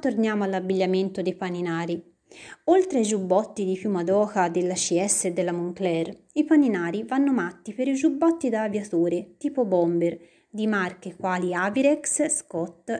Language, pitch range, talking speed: Italian, 185-250 Hz, 145 wpm